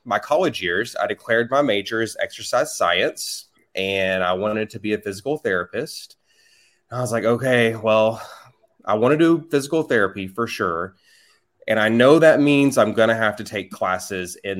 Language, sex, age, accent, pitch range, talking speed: English, male, 20-39, American, 100-125 Hz, 185 wpm